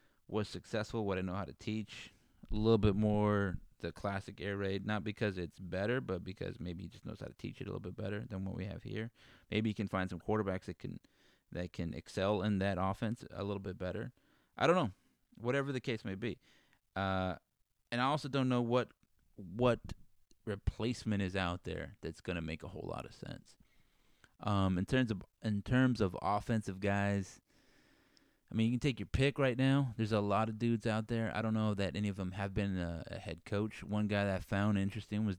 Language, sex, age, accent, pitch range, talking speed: English, male, 20-39, American, 95-115 Hz, 220 wpm